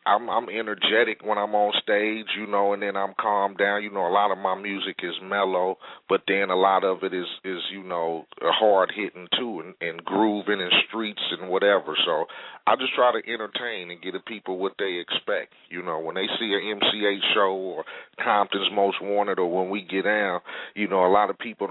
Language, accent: English, American